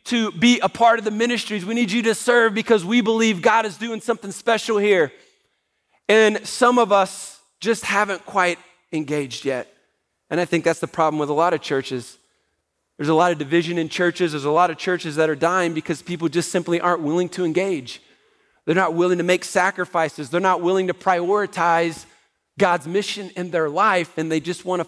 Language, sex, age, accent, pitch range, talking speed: English, male, 40-59, American, 170-205 Hz, 205 wpm